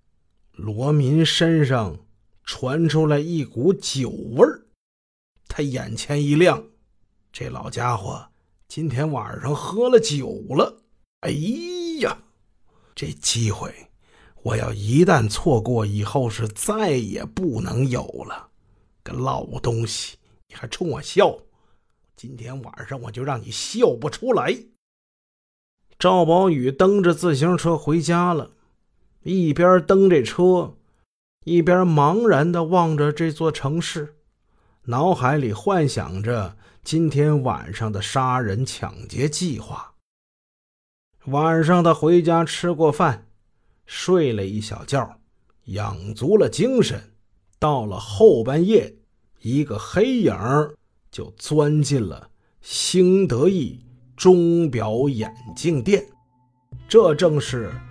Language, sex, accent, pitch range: Chinese, male, native, 110-165 Hz